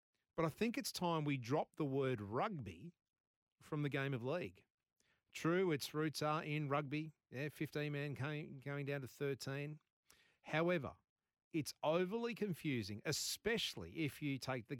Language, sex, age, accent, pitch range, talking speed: English, male, 40-59, Australian, 125-165 Hz, 150 wpm